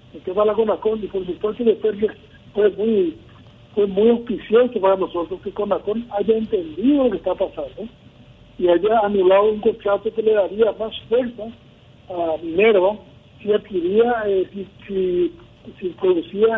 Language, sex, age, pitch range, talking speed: Spanish, male, 60-79, 185-235 Hz, 150 wpm